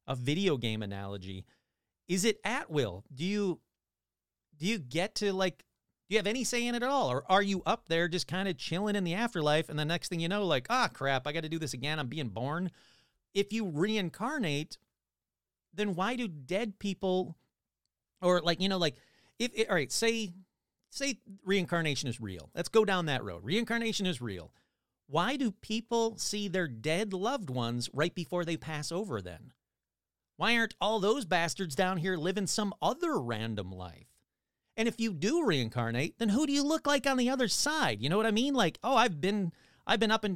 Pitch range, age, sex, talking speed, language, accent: 125-205 Hz, 40-59, male, 205 wpm, English, American